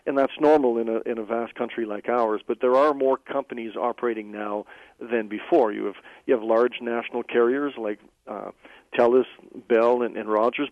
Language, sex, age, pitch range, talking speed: English, male, 50-69, 115-135 Hz, 190 wpm